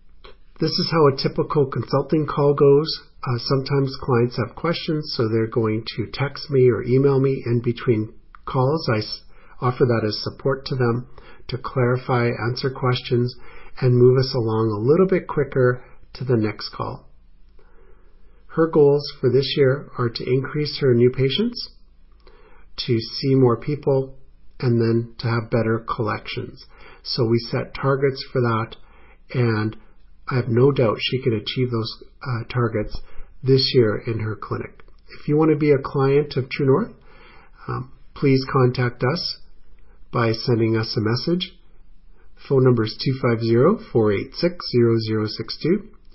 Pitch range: 115-140 Hz